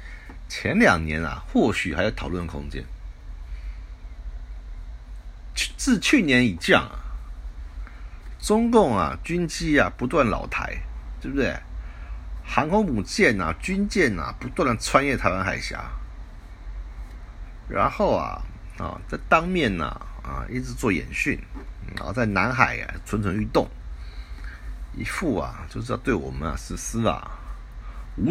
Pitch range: 65-95 Hz